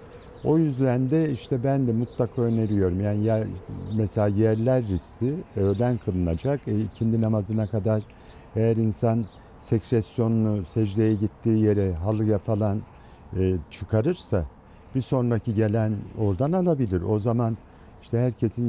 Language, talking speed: Turkish, 125 wpm